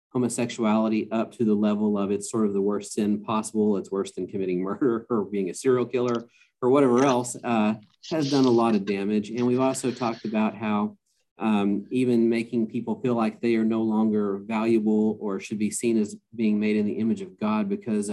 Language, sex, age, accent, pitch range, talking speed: English, male, 40-59, American, 105-125 Hz, 210 wpm